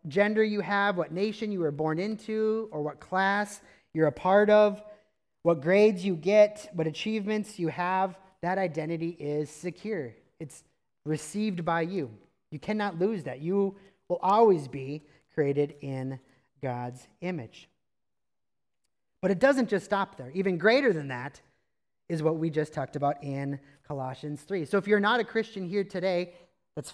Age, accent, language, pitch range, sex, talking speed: 30-49, American, English, 155-195 Hz, male, 160 wpm